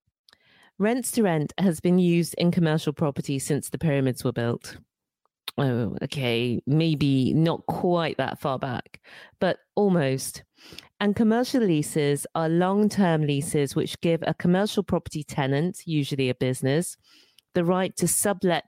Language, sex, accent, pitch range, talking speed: English, female, British, 140-185 Hz, 140 wpm